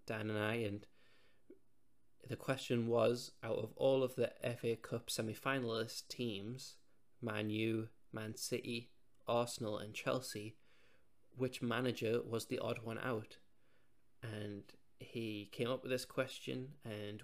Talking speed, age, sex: 130 wpm, 20-39, male